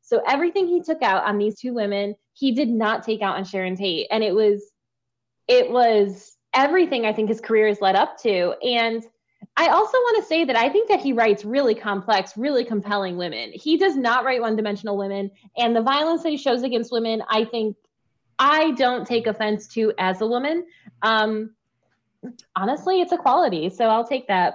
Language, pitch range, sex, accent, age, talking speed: English, 195-260 Hz, female, American, 20-39, 195 wpm